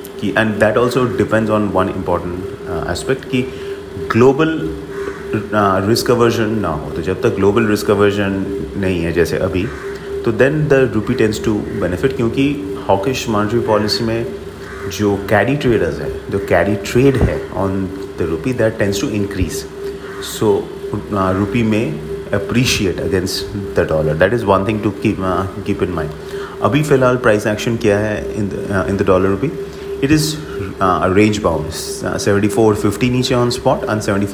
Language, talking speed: English, 155 wpm